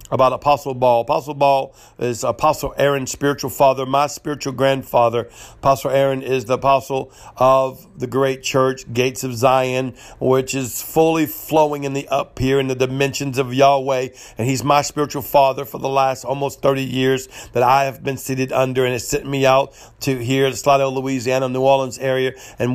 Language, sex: English, male